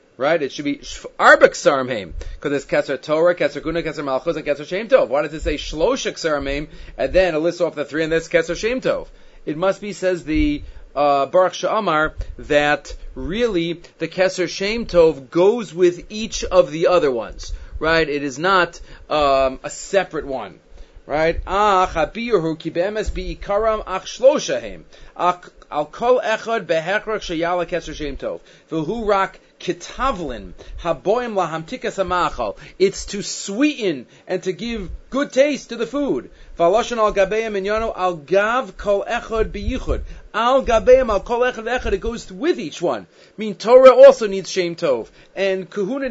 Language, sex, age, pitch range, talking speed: English, male, 30-49, 160-220 Hz, 160 wpm